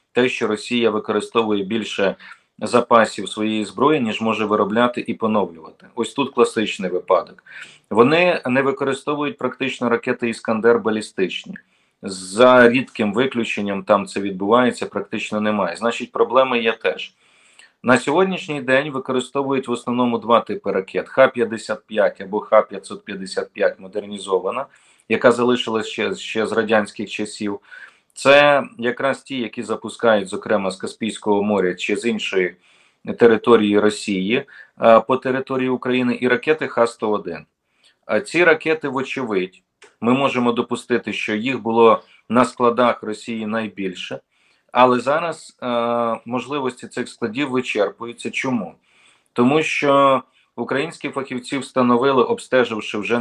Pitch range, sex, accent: 105-130 Hz, male, native